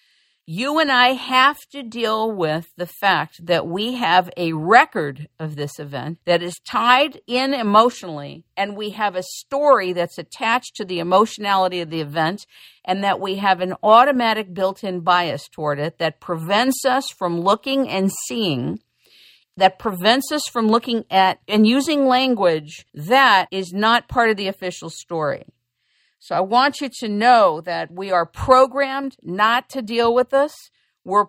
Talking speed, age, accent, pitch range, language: 165 wpm, 50-69, American, 175-250 Hz, English